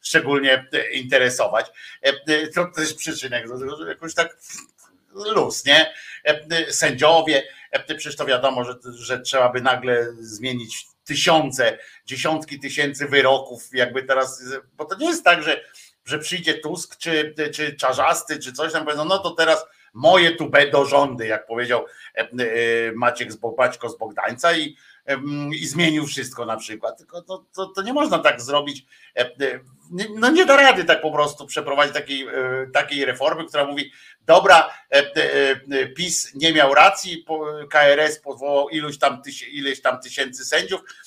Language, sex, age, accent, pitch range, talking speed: Polish, male, 50-69, native, 135-165 Hz, 140 wpm